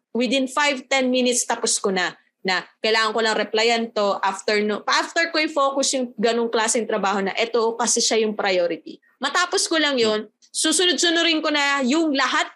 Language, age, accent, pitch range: Filipino, 20-39, native, 205-295 Hz